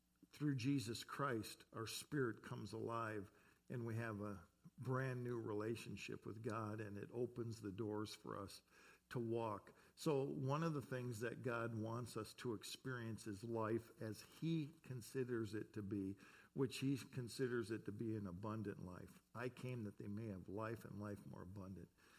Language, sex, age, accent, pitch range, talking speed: English, male, 50-69, American, 105-130 Hz, 175 wpm